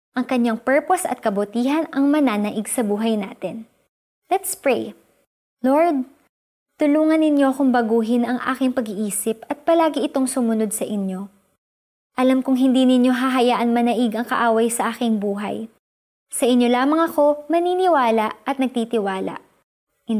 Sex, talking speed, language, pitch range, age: male, 130 wpm, Filipino, 220-285 Hz, 20-39